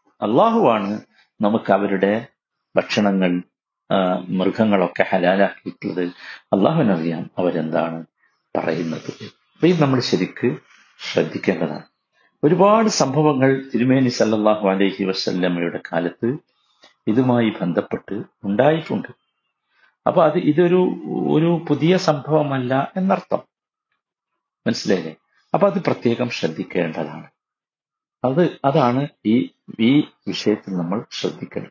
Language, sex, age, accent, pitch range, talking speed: Malayalam, male, 50-69, native, 105-175 Hz, 80 wpm